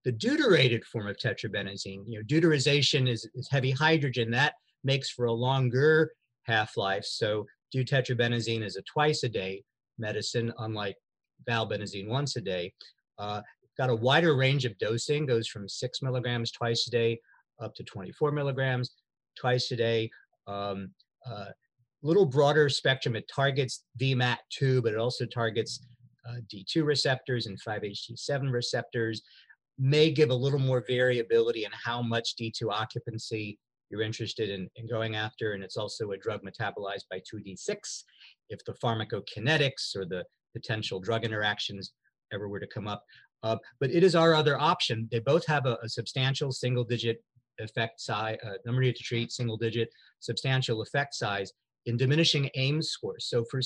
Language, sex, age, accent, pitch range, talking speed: English, male, 50-69, American, 115-135 Hz, 160 wpm